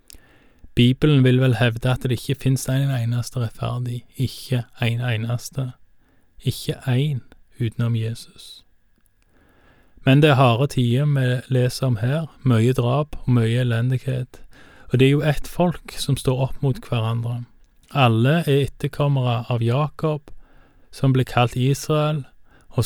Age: 20-39